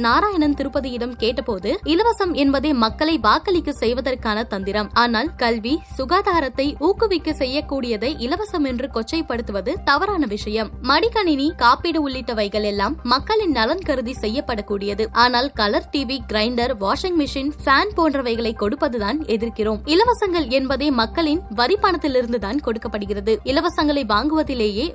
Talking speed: 110 wpm